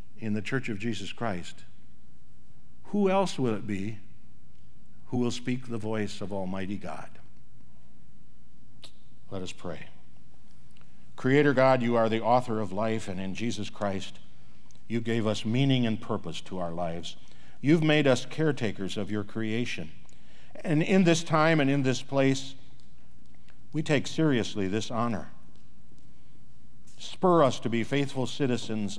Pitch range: 100-125 Hz